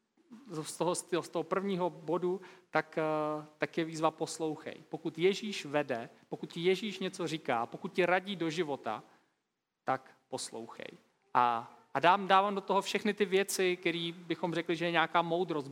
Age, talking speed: 40-59, 155 wpm